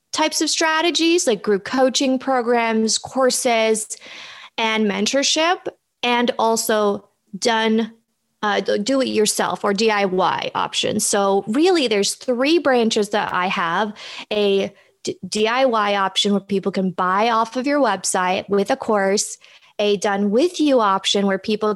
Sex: female